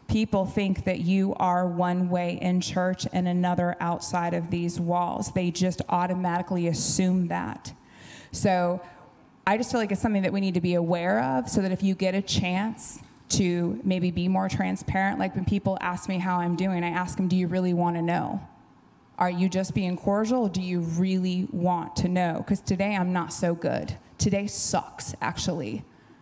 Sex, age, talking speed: female, 20-39, 190 wpm